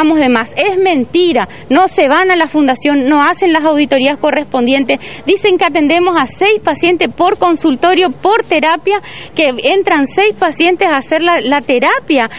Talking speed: 165 wpm